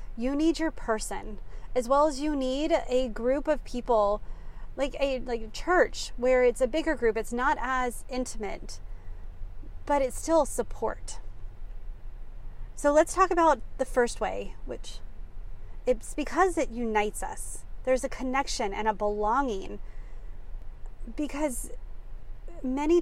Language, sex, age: English, female, 30-49